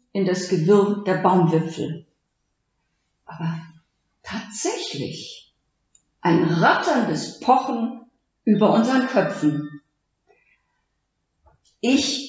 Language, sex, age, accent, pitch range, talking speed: German, female, 50-69, German, 180-250 Hz, 70 wpm